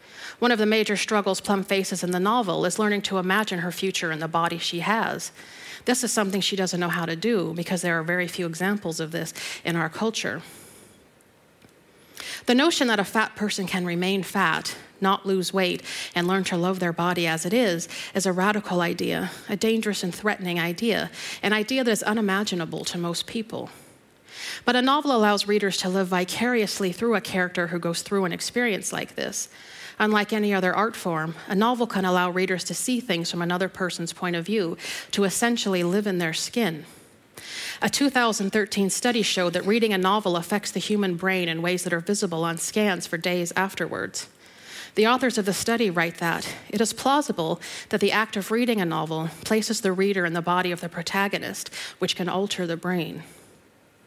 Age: 40-59